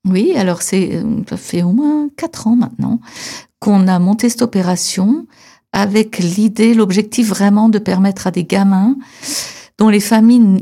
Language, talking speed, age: French, 155 wpm, 60-79